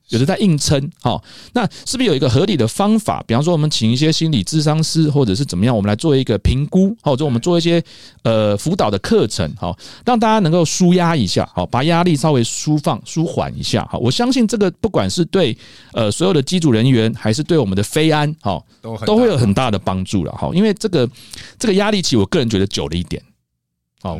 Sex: male